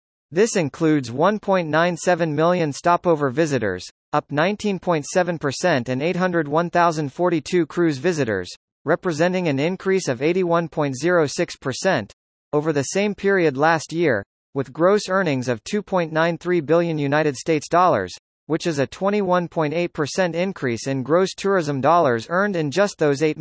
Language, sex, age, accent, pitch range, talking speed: English, male, 40-59, American, 135-180 Hz, 110 wpm